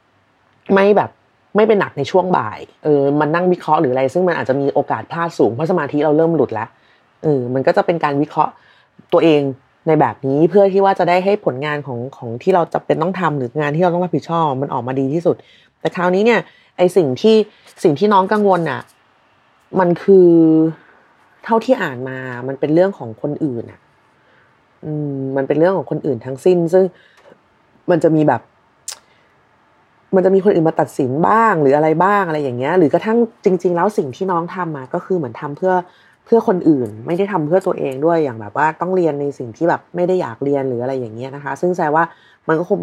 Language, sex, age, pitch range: Thai, female, 30-49, 140-185 Hz